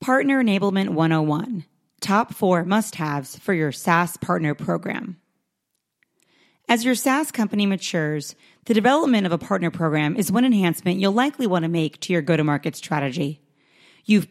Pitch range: 165-215 Hz